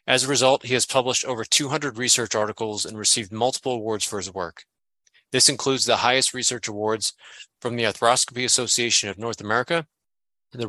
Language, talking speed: English, 175 wpm